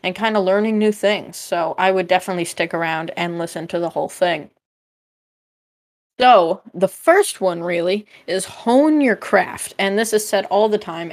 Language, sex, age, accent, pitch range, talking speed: English, female, 20-39, American, 180-220 Hz, 185 wpm